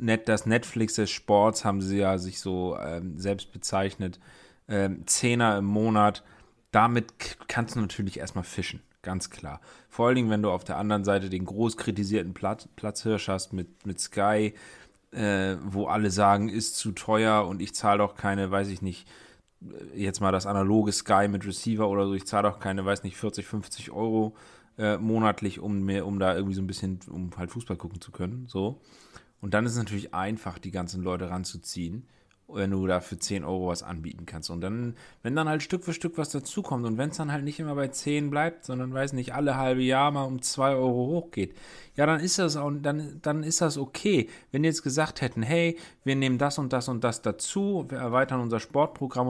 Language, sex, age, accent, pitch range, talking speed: German, male, 30-49, German, 100-135 Hz, 210 wpm